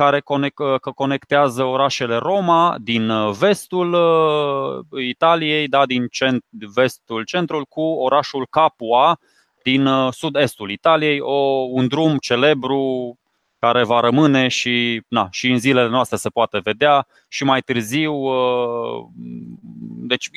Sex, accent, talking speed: male, native, 110 wpm